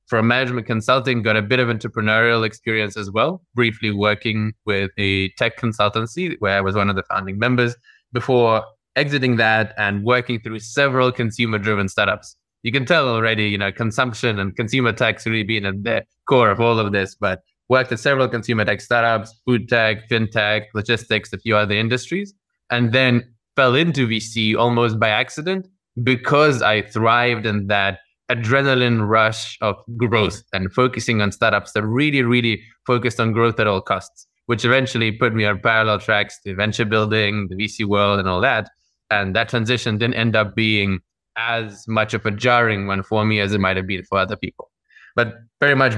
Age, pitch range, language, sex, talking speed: 20-39, 105-120 Hz, English, male, 185 wpm